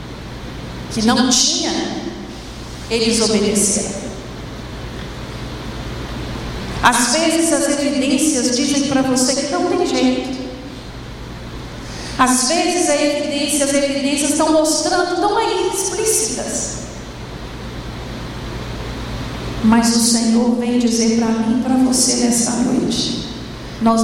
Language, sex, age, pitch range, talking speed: Portuguese, female, 50-69, 235-295 Hz, 95 wpm